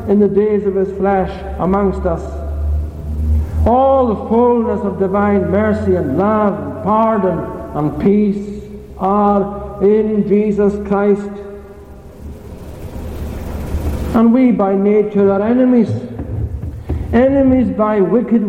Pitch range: 190-230 Hz